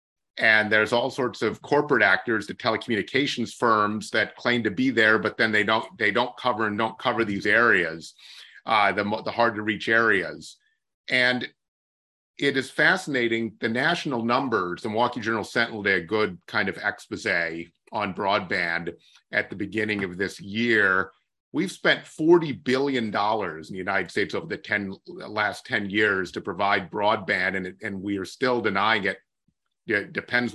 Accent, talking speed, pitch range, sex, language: American, 165 wpm, 105-125 Hz, male, English